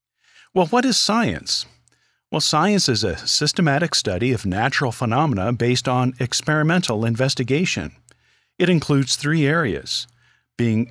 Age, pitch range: 50-69, 115-155 Hz